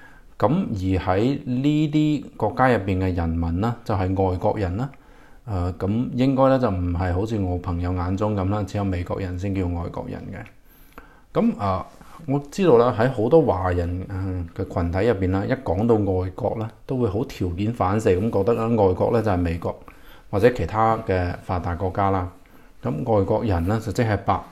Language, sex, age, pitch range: Chinese, male, 20-39, 95-115 Hz